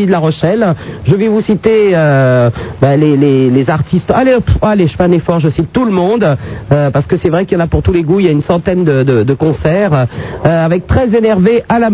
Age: 50-69